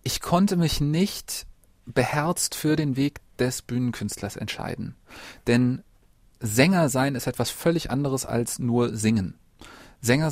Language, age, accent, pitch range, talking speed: German, 30-49, German, 120-145 Hz, 130 wpm